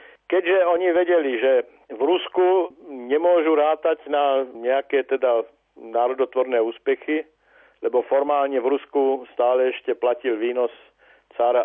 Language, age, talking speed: Slovak, 50-69, 115 wpm